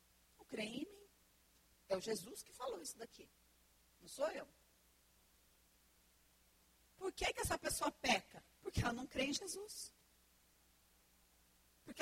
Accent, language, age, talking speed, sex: Brazilian, Portuguese, 40-59, 130 wpm, female